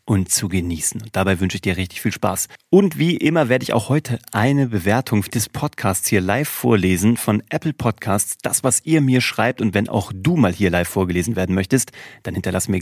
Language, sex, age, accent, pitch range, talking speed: German, male, 30-49, German, 95-125 Hz, 215 wpm